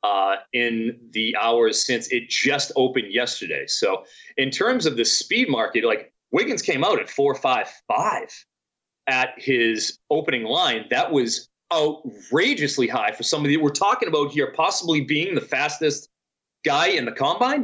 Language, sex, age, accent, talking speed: English, male, 30-49, American, 155 wpm